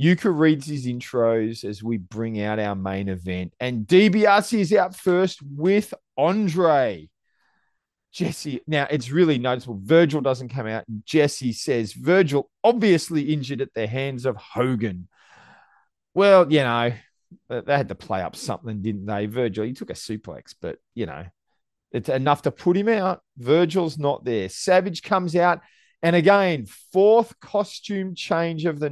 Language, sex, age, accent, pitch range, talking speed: English, male, 30-49, Australian, 125-185 Hz, 155 wpm